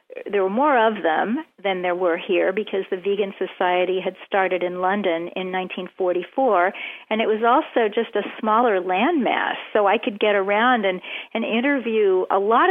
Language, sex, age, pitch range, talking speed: English, female, 40-59, 185-225 Hz, 175 wpm